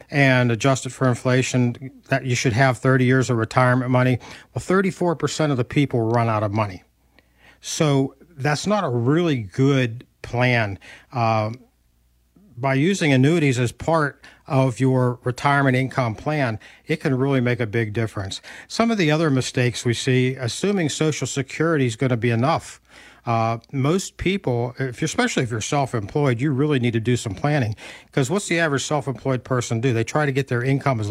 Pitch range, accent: 120-145 Hz, American